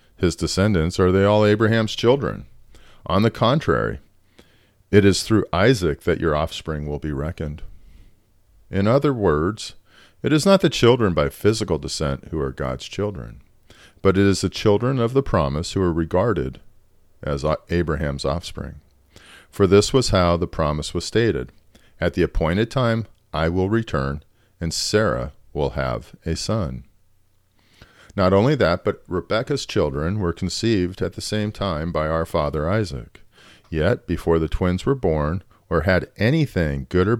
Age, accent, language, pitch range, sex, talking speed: 40-59, American, English, 80-105 Hz, male, 155 wpm